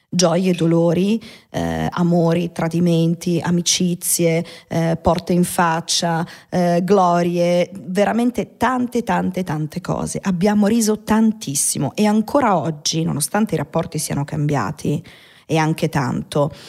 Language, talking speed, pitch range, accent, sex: Italian, 110 wpm, 165-195 Hz, native, female